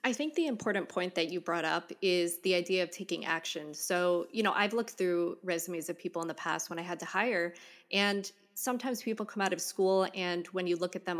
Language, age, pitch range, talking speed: English, 20-39, 170-190 Hz, 240 wpm